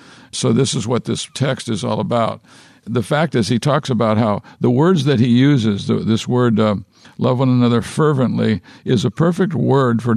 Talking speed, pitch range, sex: 195 wpm, 110-135 Hz, male